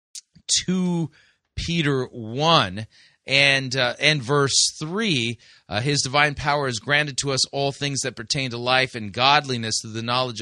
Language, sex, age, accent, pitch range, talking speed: English, male, 30-49, American, 115-155 Hz, 155 wpm